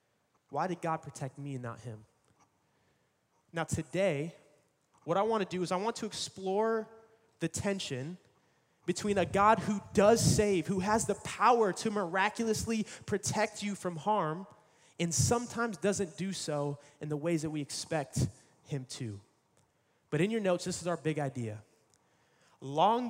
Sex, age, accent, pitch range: male, 20-39, American, 175-245 Hz